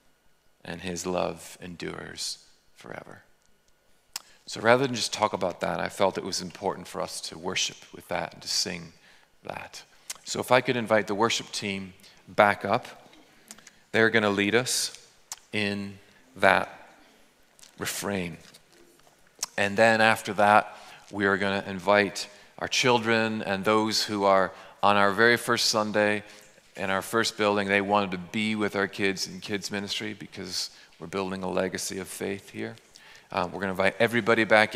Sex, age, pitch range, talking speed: male, 40-59, 95-110 Hz, 160 wpm